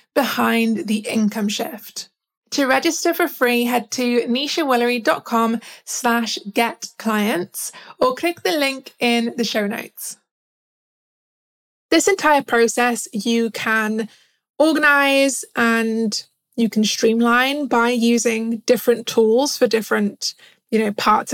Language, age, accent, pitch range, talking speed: English, 20-39, British, 225-265 Hz, 110 wpm